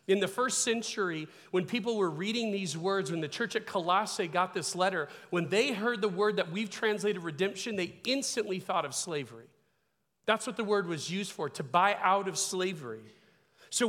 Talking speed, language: 195 wpm, English